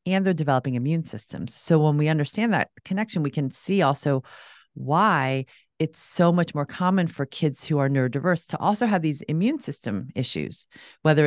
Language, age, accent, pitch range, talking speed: English, 40-59, American, 130-165 Hz, 180 wpm